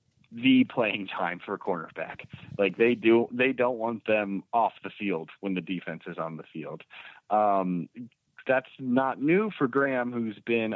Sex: male